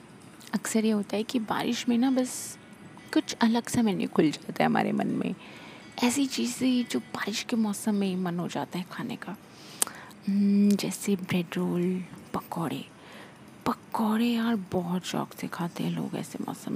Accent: native